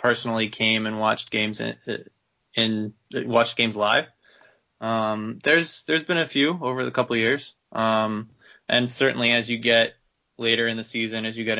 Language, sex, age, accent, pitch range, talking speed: English, male, 20-39, American, 110-120 Hz, 170 wpm